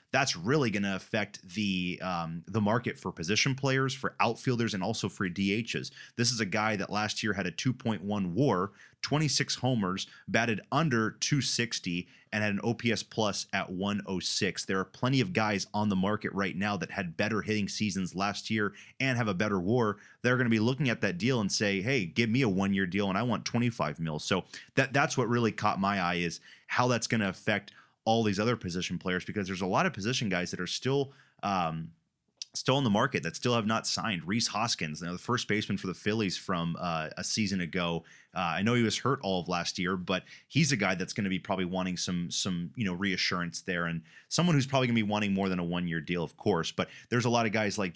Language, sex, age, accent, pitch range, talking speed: English, male, 30-49, American, 95-115 Hz, 235 wpm